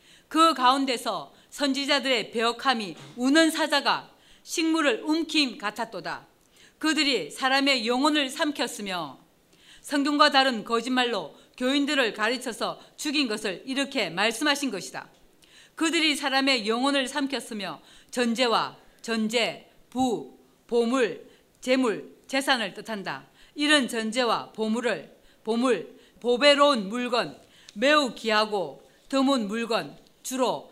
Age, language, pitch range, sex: 40-59, Korean, 225-275 Hz, female